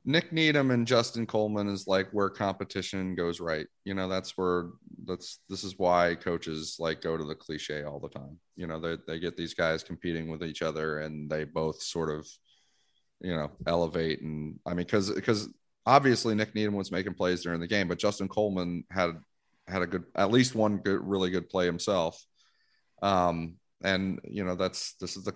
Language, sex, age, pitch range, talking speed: English, male, 30-49, 80-100 Hz, 200 wpm